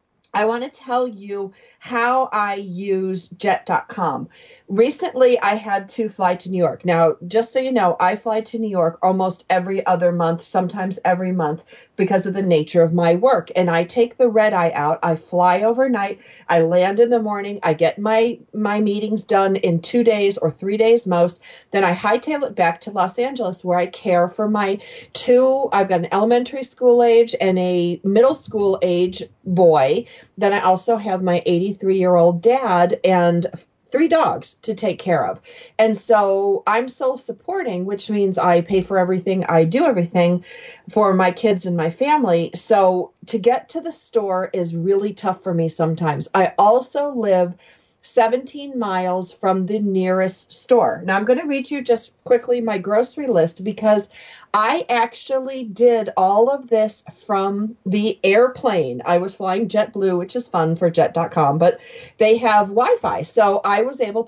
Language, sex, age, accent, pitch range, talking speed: English, female, 40-59, American, 180-235 Hz, 175 wpm